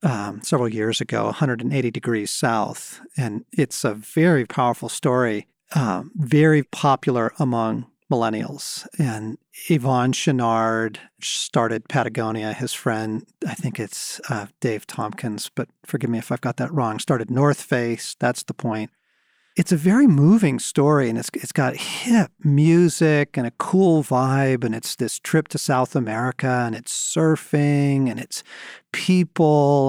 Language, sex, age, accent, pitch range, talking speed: English, male, 40-59, American, 120-155 Hz, 145 wpm